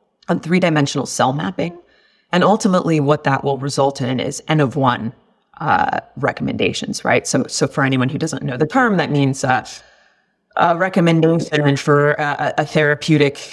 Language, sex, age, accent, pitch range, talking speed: English, female, 30-49, American, 135-165 Hz, 145 wpm